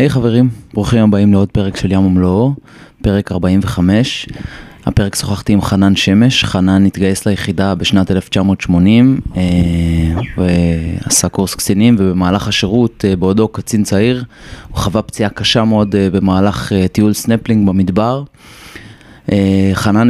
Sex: male